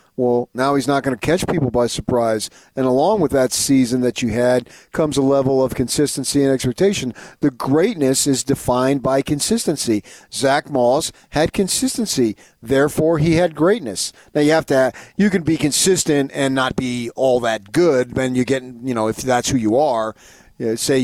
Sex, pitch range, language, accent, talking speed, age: male, 120-155 Hz, English, American, 185 wpm, 40-59